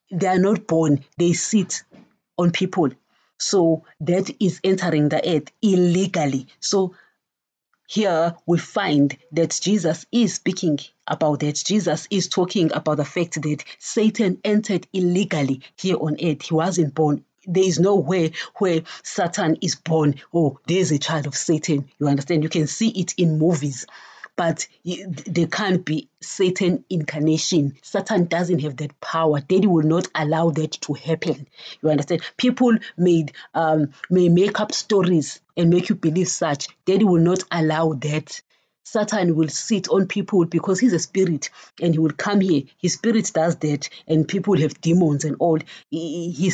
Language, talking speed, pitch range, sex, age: English, 160 wpm, 155-190 Hz, female, 30-49